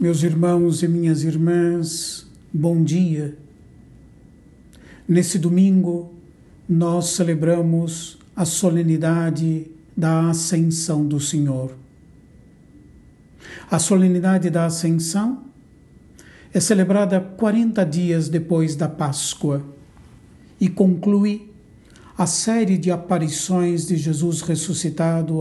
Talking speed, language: 85 wpm, Portuguese